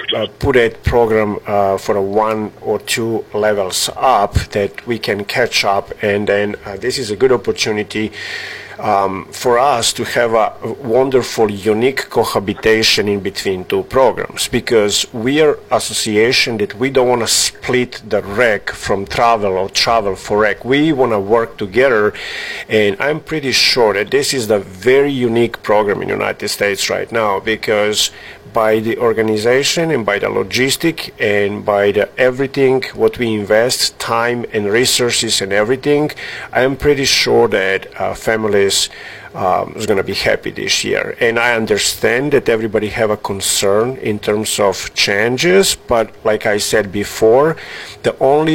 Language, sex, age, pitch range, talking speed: English, male, 50-69, 105-130 Hz, 165 wpm